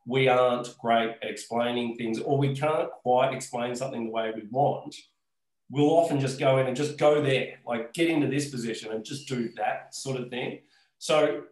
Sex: male